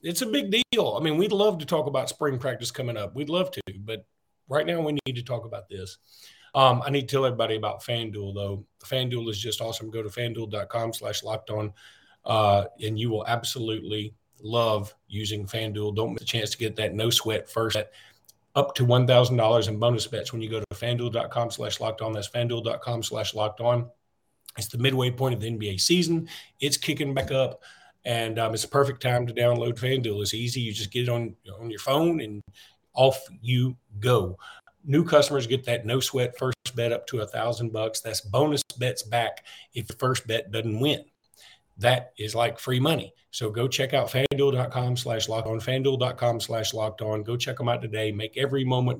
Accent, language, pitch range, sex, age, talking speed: American, English, 110-135 Hz, male, 40-59, 200 wpm